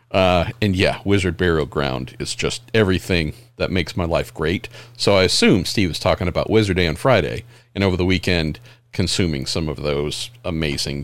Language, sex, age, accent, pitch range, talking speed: English, male, 40-59, American, 100-125 Hz, 185 wpm